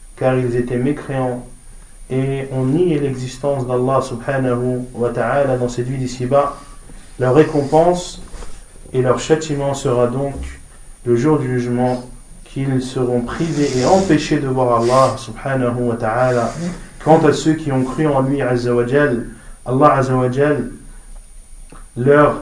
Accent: French